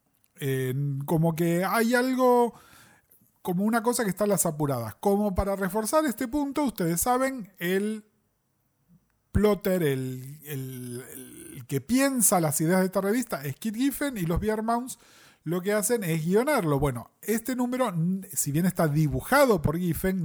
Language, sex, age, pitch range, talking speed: Spanish, male, 40-59, 150-220 Hz, 155 wpm